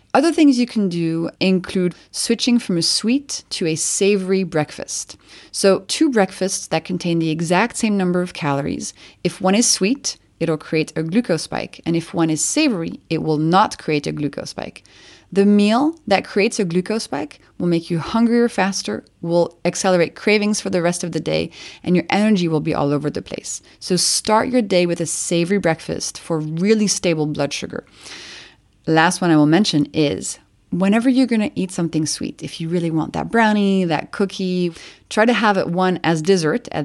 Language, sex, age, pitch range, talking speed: English, female, 30-49, 160-215 Hz, 190 wpm